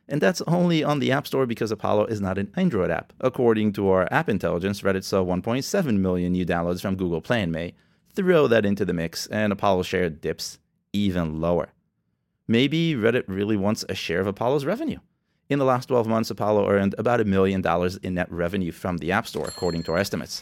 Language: English